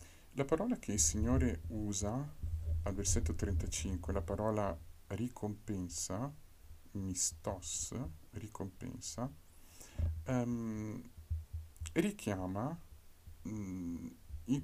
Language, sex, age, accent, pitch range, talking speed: Italian, male, 50-69, native, 85-110 Hz, 65 wpm